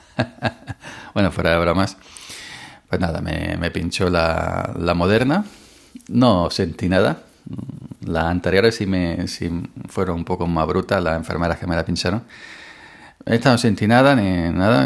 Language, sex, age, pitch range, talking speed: Spanish, male, 40-59, 90-115 Hz, 150 wpm